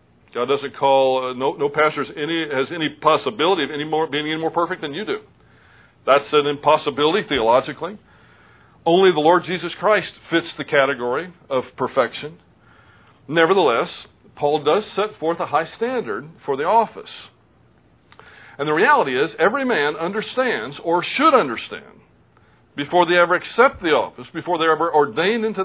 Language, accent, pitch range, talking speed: English, American, 135-175 Hz, 160 wpm